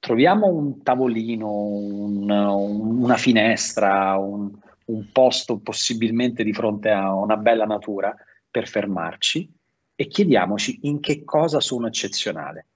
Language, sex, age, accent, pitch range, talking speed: Italian, male, 30-49, native, 105-150 Hz, 120 wpm